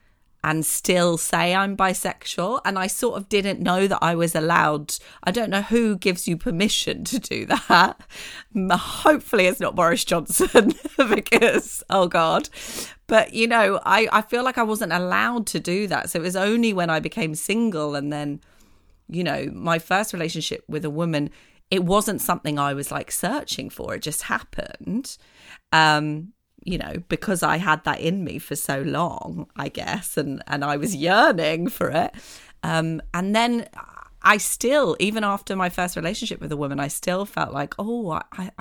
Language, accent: English, British